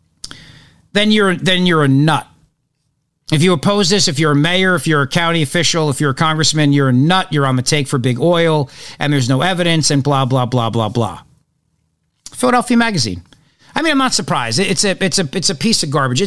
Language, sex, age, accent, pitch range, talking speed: English, male, 50-69, American, 140-175 Hz, 220 wpm